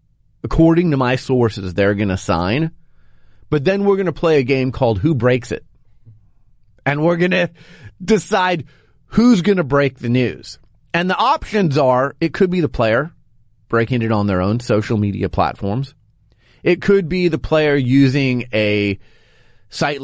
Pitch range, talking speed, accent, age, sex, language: 110-155 Hz, 170 wpm, American, 30-49, male, English